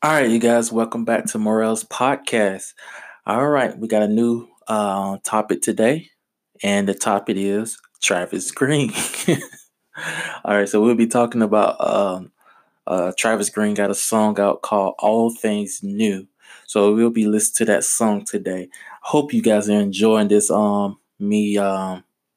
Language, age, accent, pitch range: English, 20-39, American, 100-110 Hz